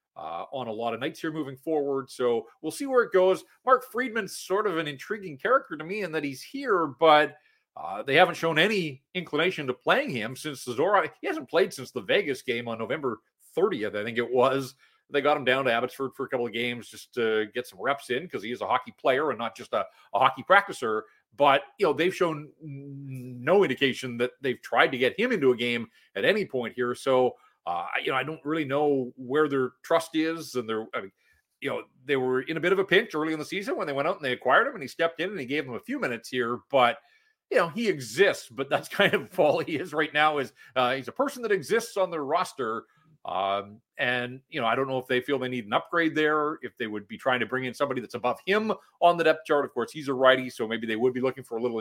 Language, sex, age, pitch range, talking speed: English, male, 40-59, 125-170 Hz, 260 wpm